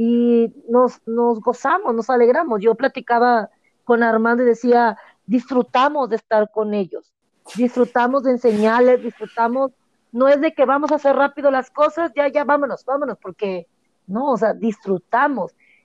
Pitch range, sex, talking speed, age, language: 225-265 Hz, female, 150 wpm, 40-59, Spanish